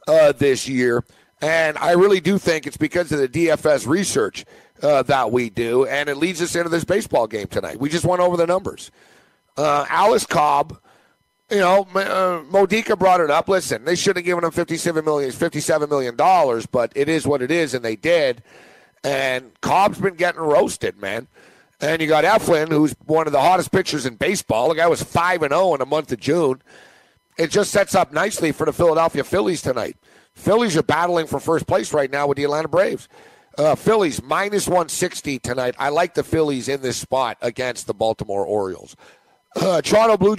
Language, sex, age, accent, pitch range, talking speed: English, male, 50-69, American, 140-180 Hz, 195 wpm